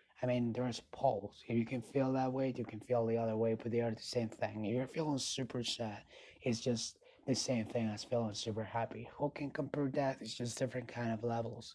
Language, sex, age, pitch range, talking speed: English, male, 30-49, 110-125 Hz, 235 wpm